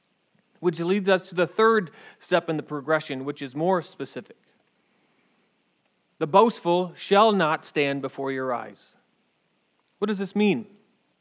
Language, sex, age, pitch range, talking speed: English, male, 30-49, 160-205 Hz, 140 wpm